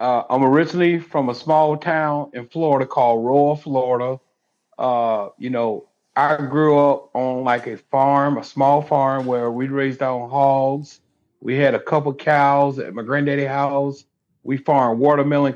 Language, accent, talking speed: English, American, 160 wpm